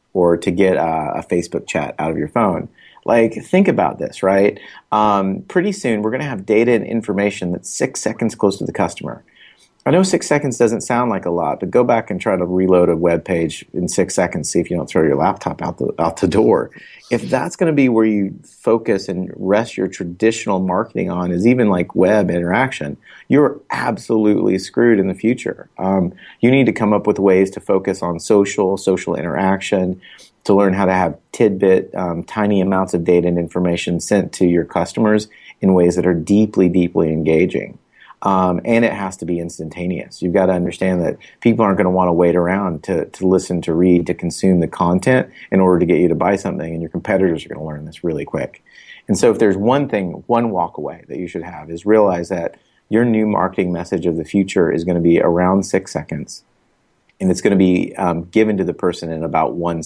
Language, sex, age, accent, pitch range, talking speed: English, male, 30-49, American, 85-105 Hz, 220 wpm